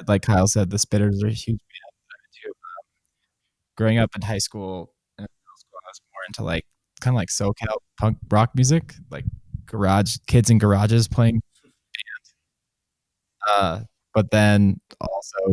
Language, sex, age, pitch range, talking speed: English, male, 20-39, 100-120 Hz, 160 wpm